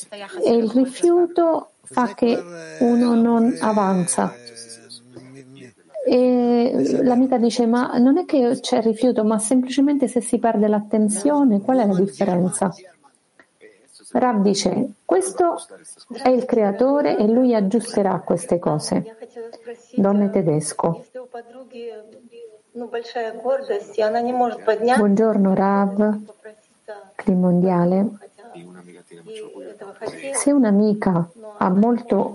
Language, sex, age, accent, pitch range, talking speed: Italian, female, 40-59, native, 200-250 Hz, 90 wpm